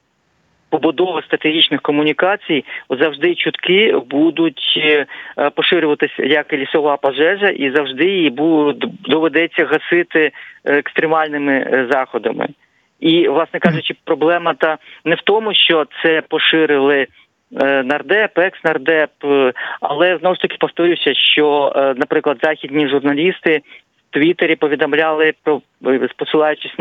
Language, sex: Ukrainian, male